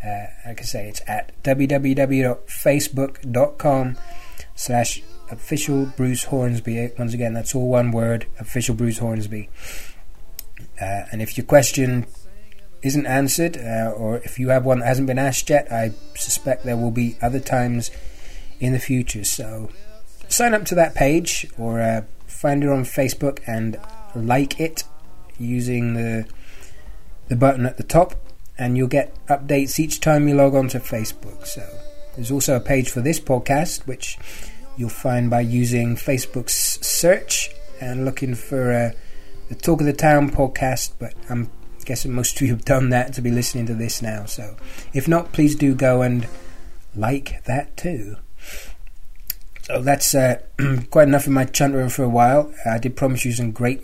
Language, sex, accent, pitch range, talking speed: English, male, British, 115-135 Hz, 160 wpm